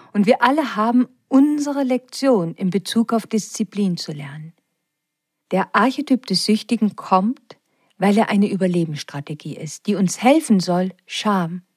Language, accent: German, German